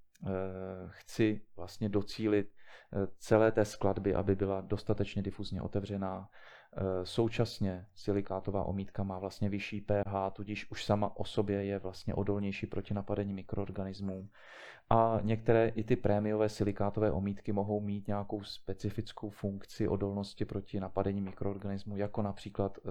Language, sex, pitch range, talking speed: Czech, male, 95-105 Hz, 125 wpm